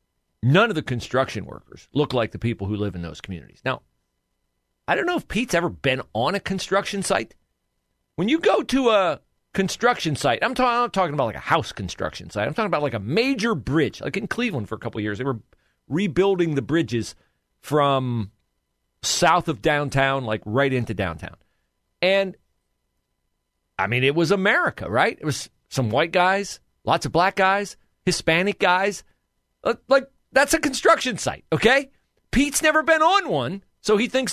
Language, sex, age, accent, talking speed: English, male, 40-59, American, 180 wpm